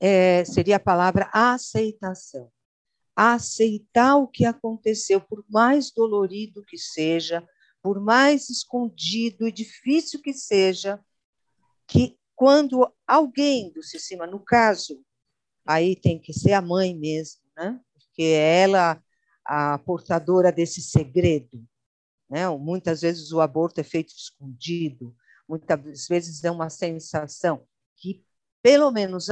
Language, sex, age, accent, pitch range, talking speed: Portuguese, female, 50-69, Brazilian, 160-230 Hz, 120 wpm